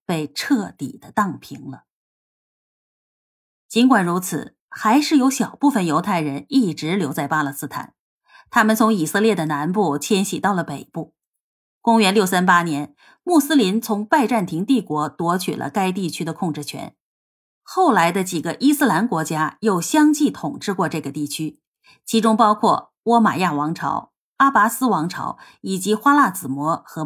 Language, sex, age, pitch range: Chinese, female, 30-49, 160-225 Hz